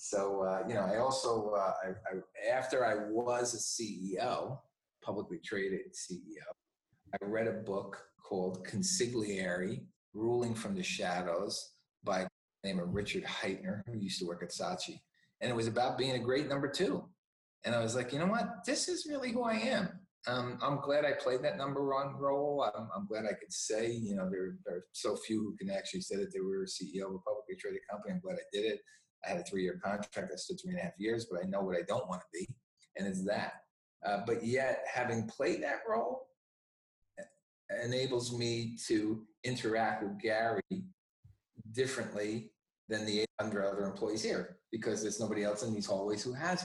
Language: English